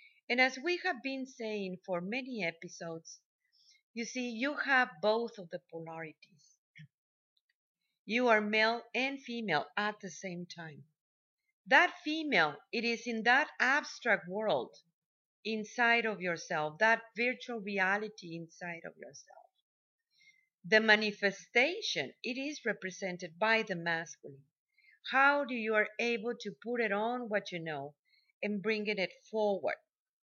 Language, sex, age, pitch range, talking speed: English, female, 50-69, 185-245 Hz, 135 wpm